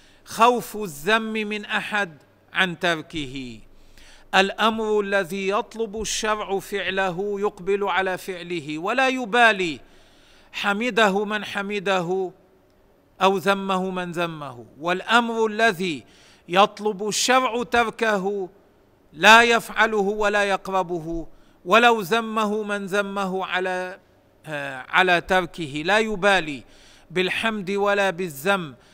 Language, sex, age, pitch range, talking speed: Arabic, male, 40-59, 165-210 Hz, 95 wpm